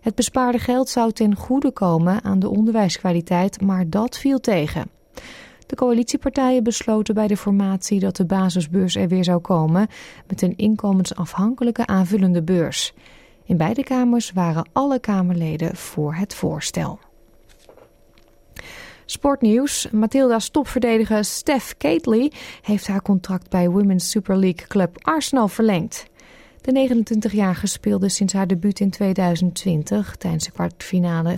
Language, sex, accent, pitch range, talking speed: Dutch, female, Dutch, 180-225 Hz, 130 wpm